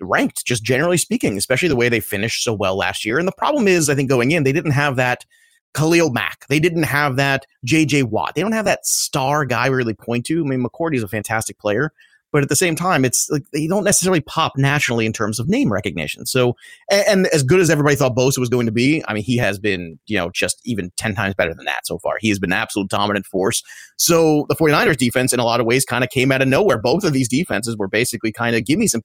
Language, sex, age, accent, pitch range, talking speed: English, male, 30-49, American, 120-170 Hz, 265 wpm